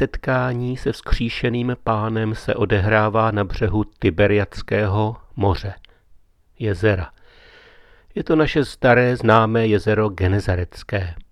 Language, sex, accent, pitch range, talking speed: Czech, male, native, 95-125 Hz, 90 wpm